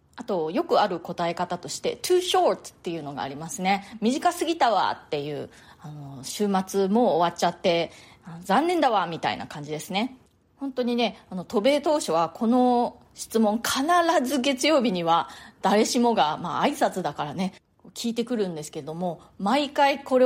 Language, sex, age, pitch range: Japanese, female, 20-39, 170-250 Hz